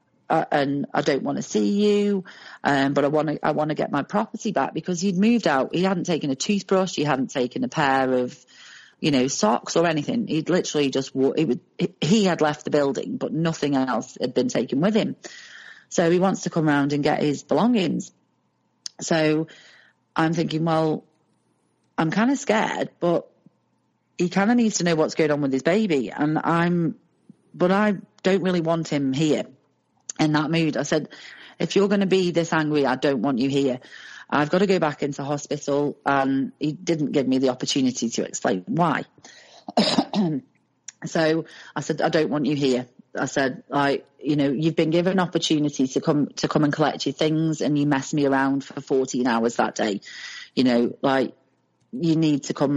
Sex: female